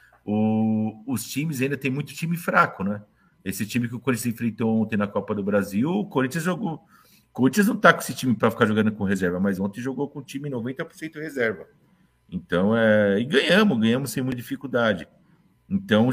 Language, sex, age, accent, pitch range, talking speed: Portuguese, male, 50-69, Brazilian, 115-155 Hz, 195 wpm